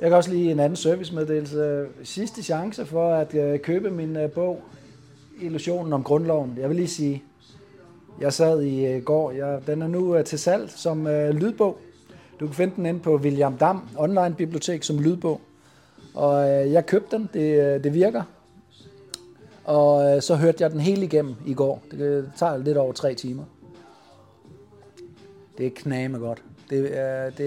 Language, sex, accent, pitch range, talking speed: Danish, male, native, 130-160 Hz, 155 wpm